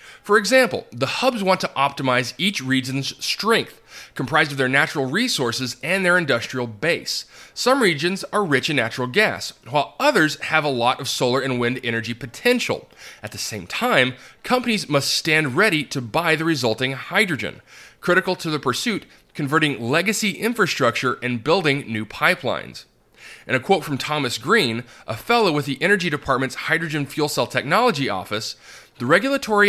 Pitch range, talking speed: 125-185 Hz, 160 wpm